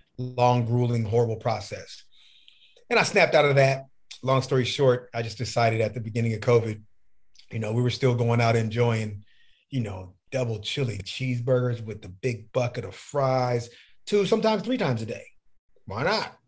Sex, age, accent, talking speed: male, 30-49, American, 175 wpm